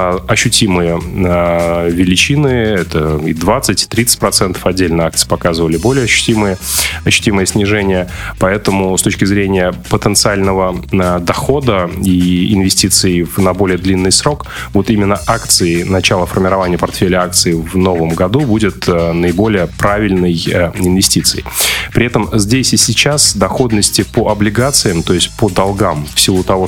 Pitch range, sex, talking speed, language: 90-105 Hz, male, 115 wpm, Russian